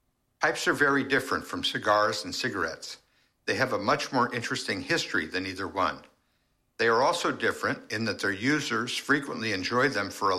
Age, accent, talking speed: 60-79, American, 180 wpm